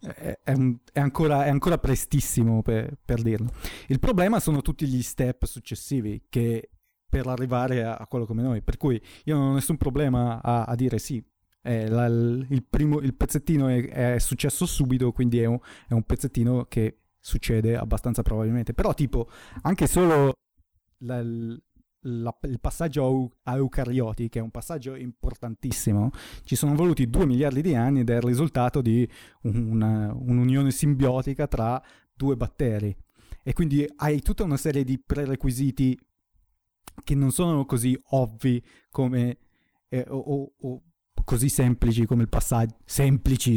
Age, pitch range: 30-49, 115-140 Hz